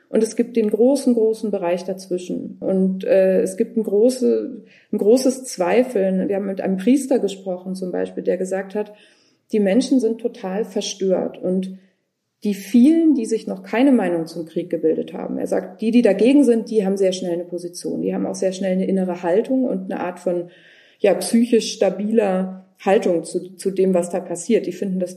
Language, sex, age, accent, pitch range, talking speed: German, female, 30-49, German, 180-225 Hz, 195 wpm